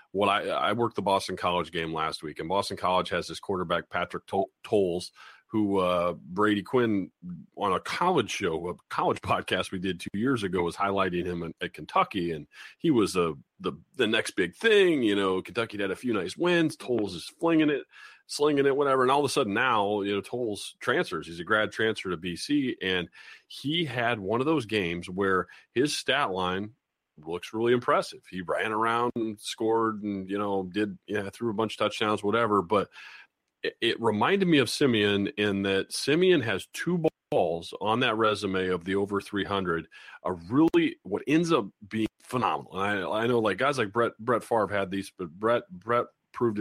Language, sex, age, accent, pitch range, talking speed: English, male, 30-49, American, 95-120 Hz, 195 wpm